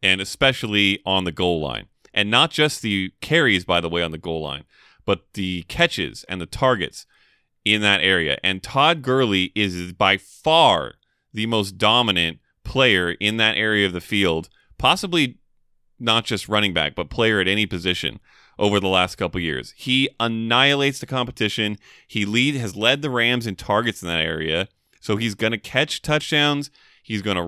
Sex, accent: male, American